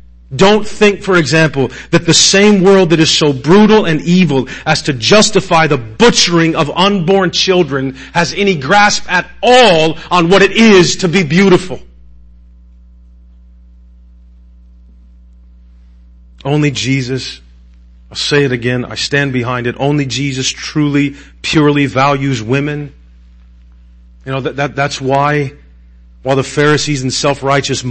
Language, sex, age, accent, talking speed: English, male, 40-59, American, 130 wpm